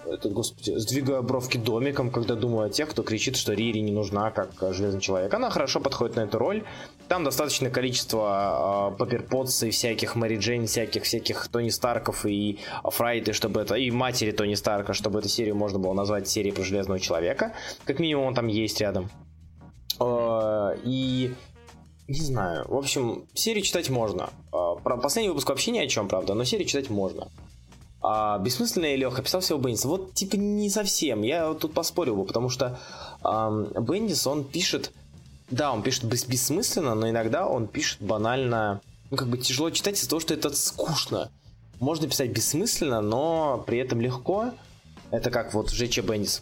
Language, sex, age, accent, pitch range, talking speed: Russian, male, 20-39, native, 105-130 Hz, 175 wpm